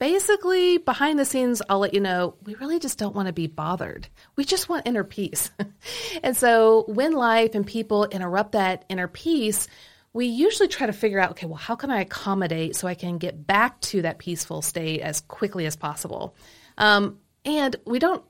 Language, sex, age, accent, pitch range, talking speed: English, female, 30-49, American, 175-235 Hz, 195 wpm